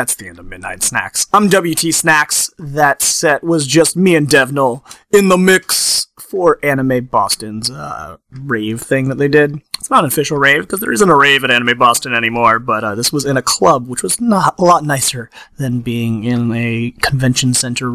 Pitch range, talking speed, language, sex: 125-165 Hz, 205 wpm, English, male